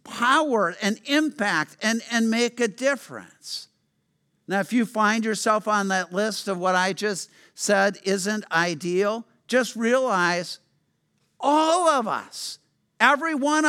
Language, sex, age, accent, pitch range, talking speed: English, male, 50-69, American, 205-265 Hz, 130 wpm